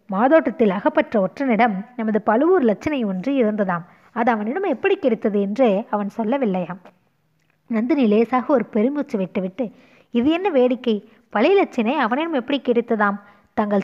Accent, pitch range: native, 205-275 Hz